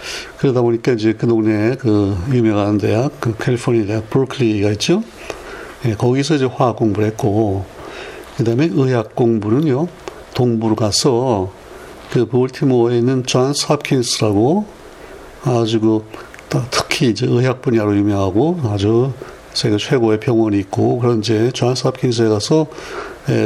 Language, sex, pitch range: Korean, male, 110-130 Hz